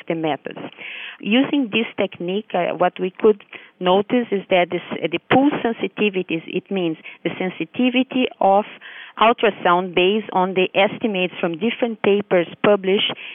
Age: 40-59